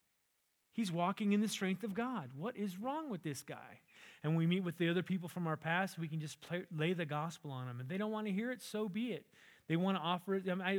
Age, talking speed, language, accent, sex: 30-49, 265 wpm, English, American, male